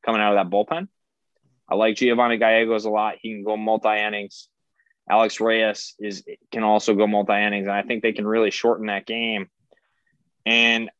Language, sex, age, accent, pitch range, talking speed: English, male, 20-39, American, 105-125 Hz, 175 wpm